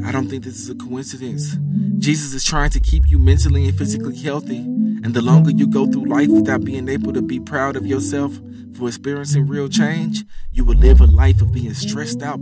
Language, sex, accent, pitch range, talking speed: English, male, American, 105-145 Hz, 215 wpm